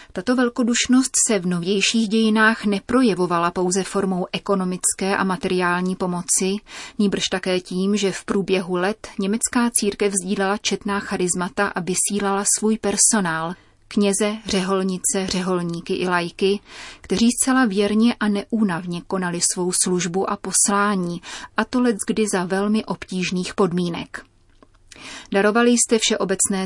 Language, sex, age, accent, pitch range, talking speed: Czech, female, 30-49, native, 185-210 Hz, 120 wpm